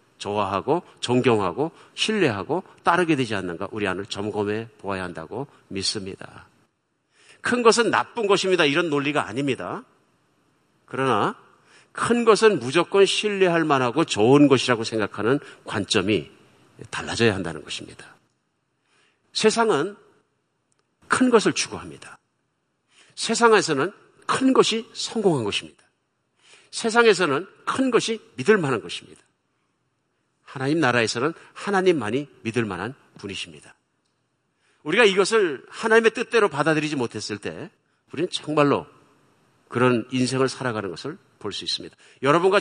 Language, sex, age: Korean, male, 50-69